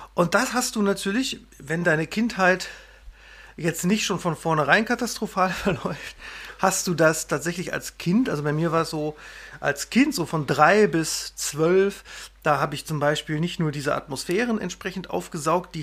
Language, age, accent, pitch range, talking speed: German, 40-59, German, 155-200 Hz, 175 wpm